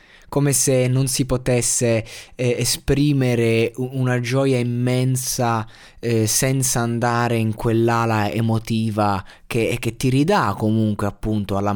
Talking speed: 115 wpm